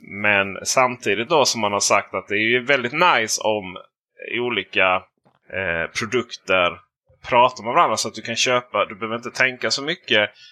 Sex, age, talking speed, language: male, 20-39, 175 wpm, Swedish